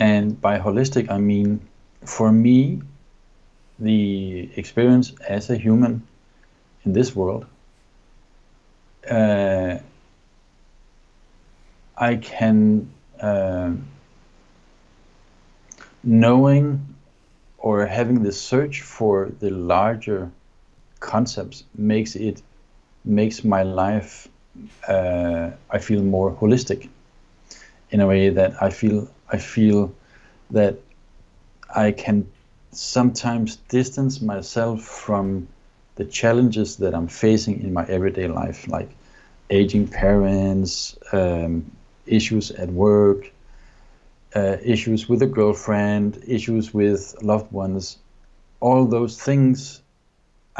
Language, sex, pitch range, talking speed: English, male, 95-115 Hz, 95 wpm